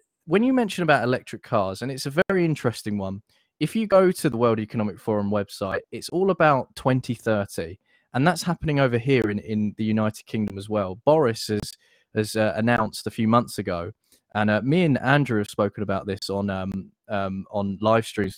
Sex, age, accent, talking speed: male, 20-39, British, 195 wpm